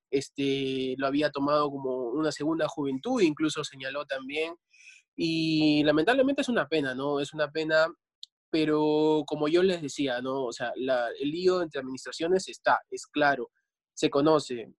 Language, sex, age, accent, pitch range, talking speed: Spanish, male, 20-39, Argentinian, 140-165 Hz, 155 wpm